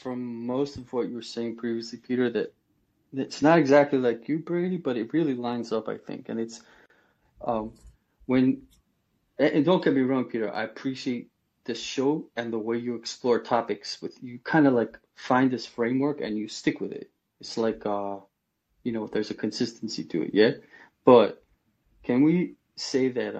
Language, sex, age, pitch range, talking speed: English, male, 30-49, 115-140 Hz, 185 wpm